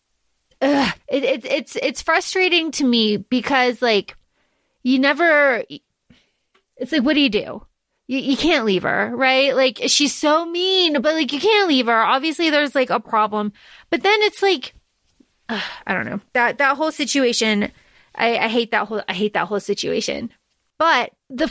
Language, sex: English, female